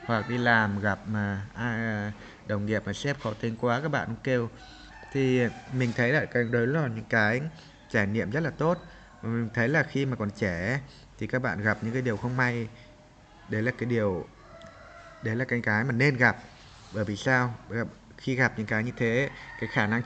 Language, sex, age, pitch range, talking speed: Vietnamese, male, 20-39, 115-145 Hz, 215 wpm